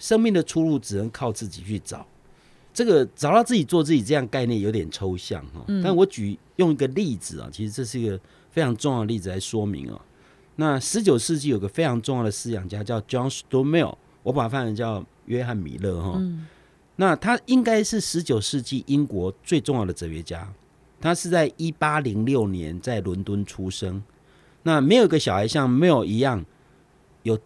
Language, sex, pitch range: Chinese, male, 105-165 Hz